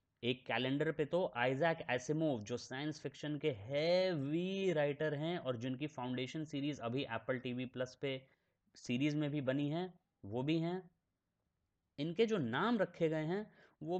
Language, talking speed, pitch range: Hindi, 165 wpm, 130-175 Hz